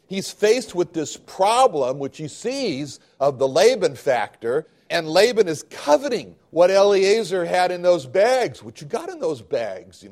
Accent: American